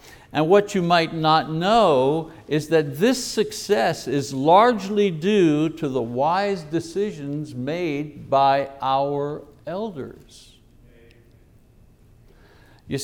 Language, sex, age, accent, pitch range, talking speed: English, male, 60-79, American, 130-185 Hz, 100 wpm